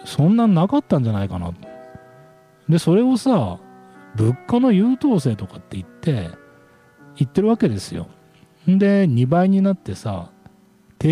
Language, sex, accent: Japanese, male, native